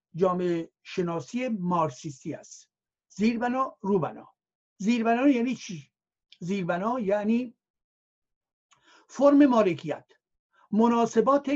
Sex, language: male, Persian